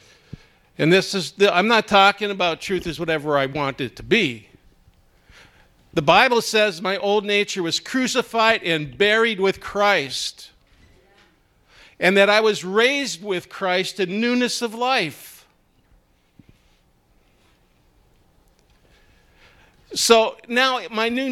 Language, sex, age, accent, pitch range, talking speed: English, male, 50-69, American, 155-215 Hz, 120 wpm